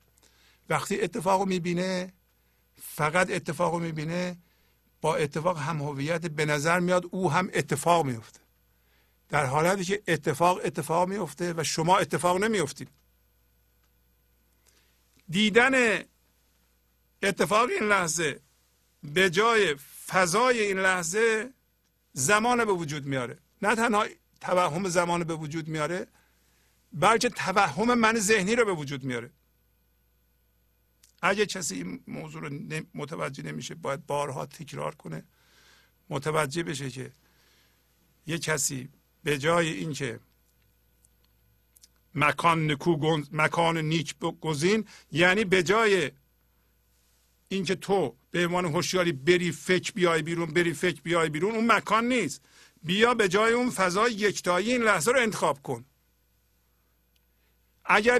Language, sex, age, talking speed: Persian, male, 50-69, 110 wpm